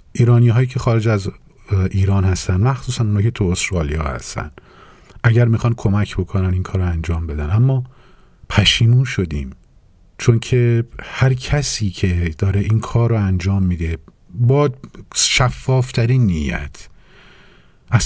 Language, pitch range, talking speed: Persian, 85-120 Hz, 135 wpm